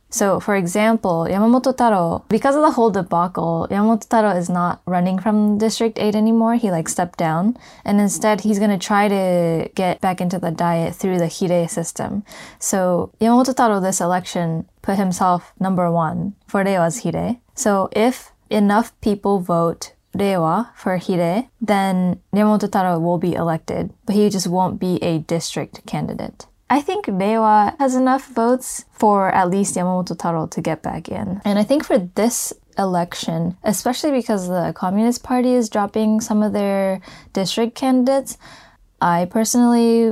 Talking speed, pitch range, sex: 160 wpm, 175-220 Hz, female